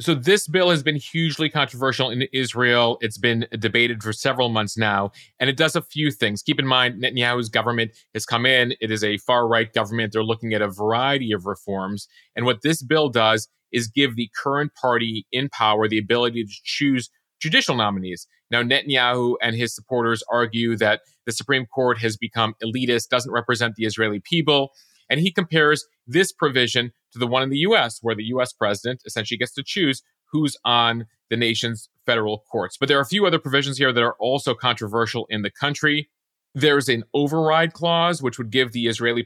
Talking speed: 195 wpm